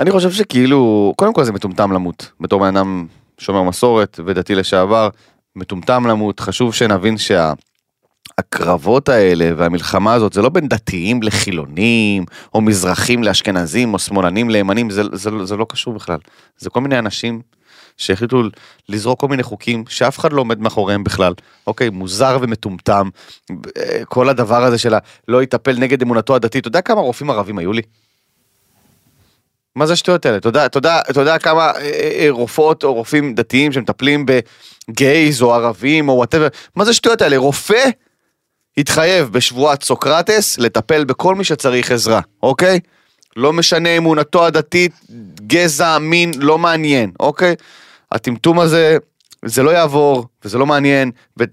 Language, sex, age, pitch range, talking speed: Hebrew, male, 30-49, 105-145 Hz, 145 wpm